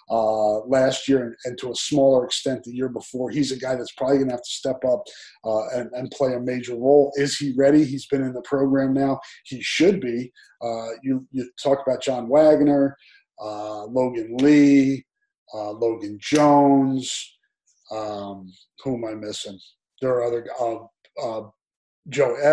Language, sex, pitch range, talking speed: English, male, 120-140 Hz, 175 wpm